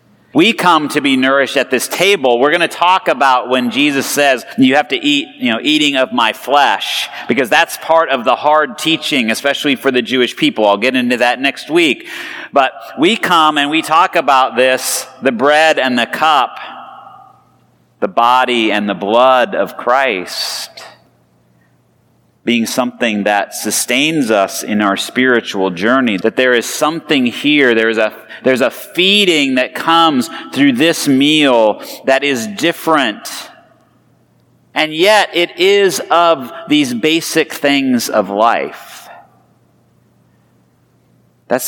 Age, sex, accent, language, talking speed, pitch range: 40-59, male, American, English, 145 wpm, 115-165 Hz